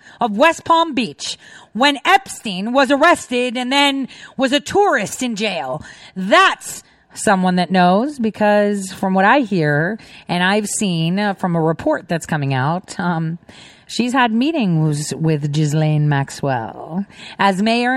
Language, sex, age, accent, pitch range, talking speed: English, female, 40-59, American, 165-250 Hz, 140 wpm